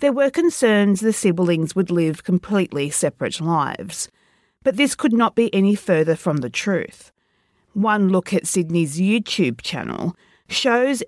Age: 40-59